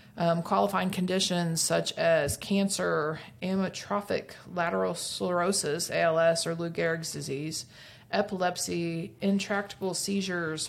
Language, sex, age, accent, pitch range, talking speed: English, female, 30-49, American, 155-195 Hz, 95 wpm